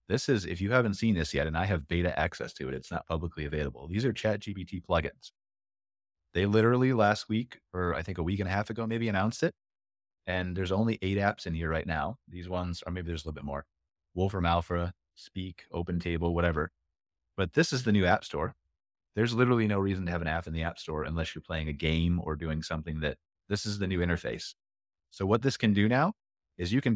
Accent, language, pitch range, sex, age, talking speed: American, English, 85-110 Hz, male, 30-49, 235 wpm